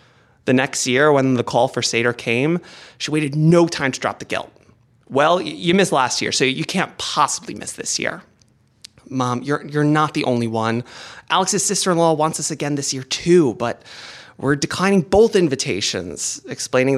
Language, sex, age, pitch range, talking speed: English, male, 20-39, 115-150 Hz, 175 wpm